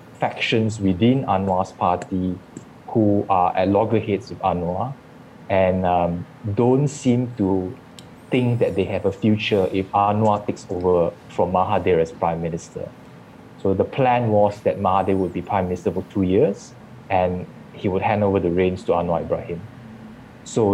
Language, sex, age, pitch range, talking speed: English, male, 20-39, 90-110 Hz, 155 wpm